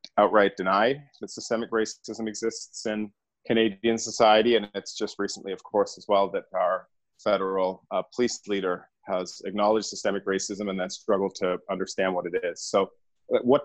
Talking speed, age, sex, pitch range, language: 165 wpm, 30-49, male, 100-120 Hz, English